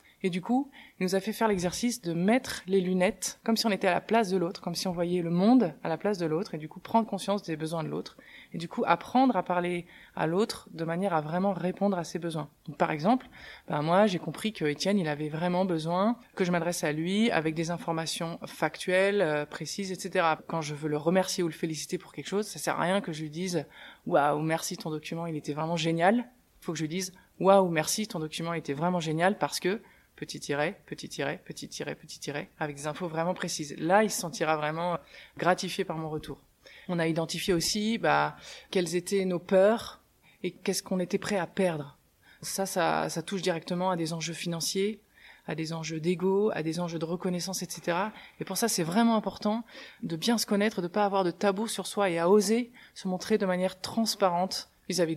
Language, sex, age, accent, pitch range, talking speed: French, female, 20-39, French, 165-200 Hz, 235 wpm